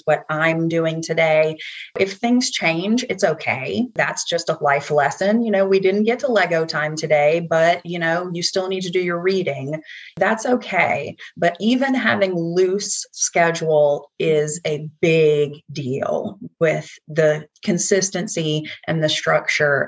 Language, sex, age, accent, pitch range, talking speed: English, female, 30-49, American, 155-195 Hz, 150 wpm